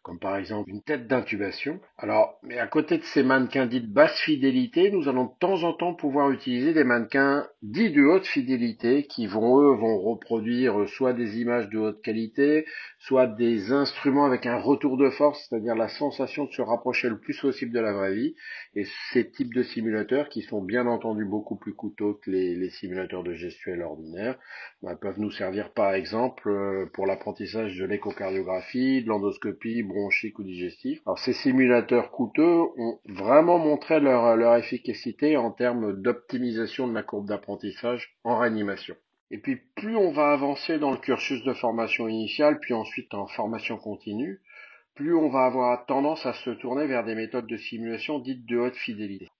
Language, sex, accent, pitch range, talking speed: French, male, French, 110-145 Hz, 180 wpm